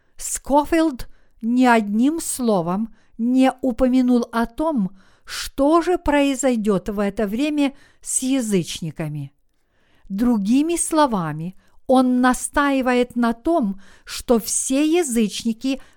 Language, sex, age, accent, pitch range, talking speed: Russian, female, 50-69, native, 210-275 Hz, 95 wpm